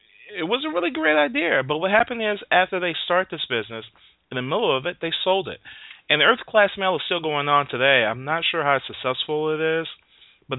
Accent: American